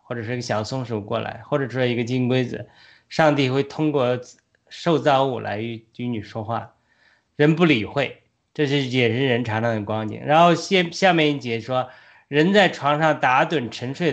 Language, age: Chinese, 20-39